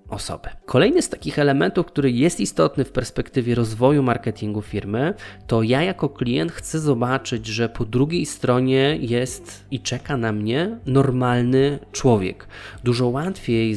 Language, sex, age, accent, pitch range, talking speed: Polish, male, 20-39, native, 105-125 Hz, 140 wpm